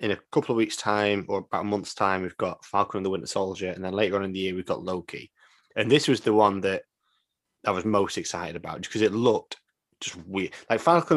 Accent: British